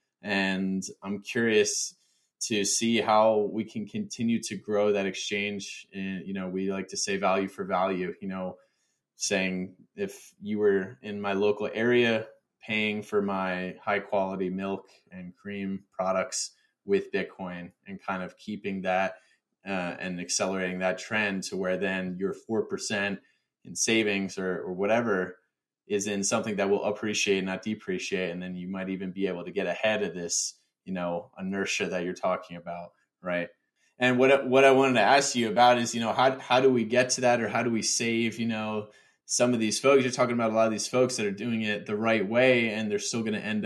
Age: 20-39